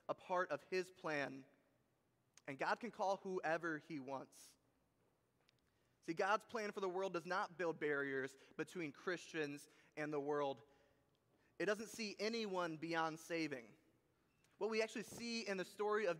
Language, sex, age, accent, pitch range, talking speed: English, male, 20-39, American, 160-205 Hz, 150 wpm